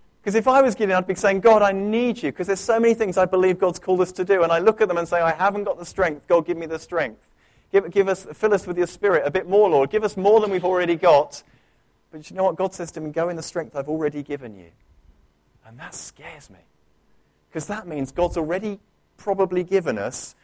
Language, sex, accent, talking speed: English, male, British, 260 wpm